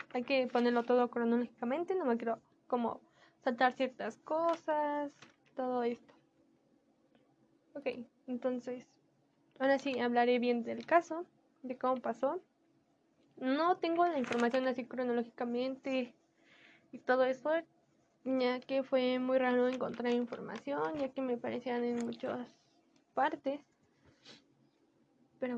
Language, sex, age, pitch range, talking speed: Spanish, female, 10-29, 245-275 Hz, 115 wpm